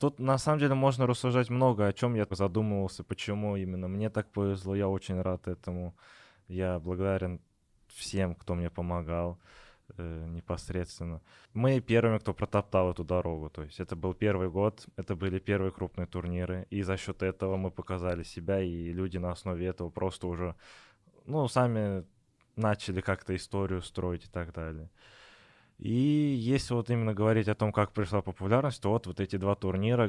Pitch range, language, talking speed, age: 90-105 Hz, Russian, 170 wpm, 20-39